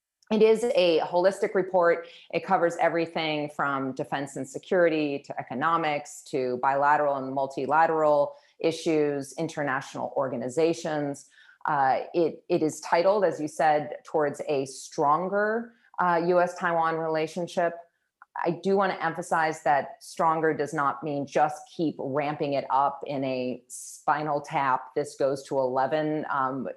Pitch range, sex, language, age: 145-175 Hz, female, English, 30-49